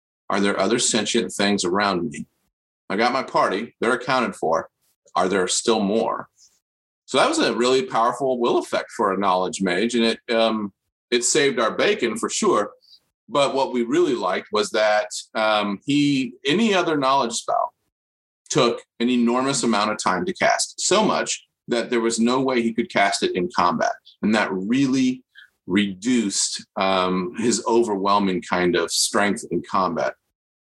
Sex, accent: male, American